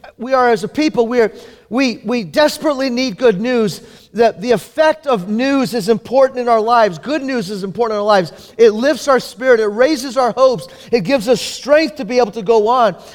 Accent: American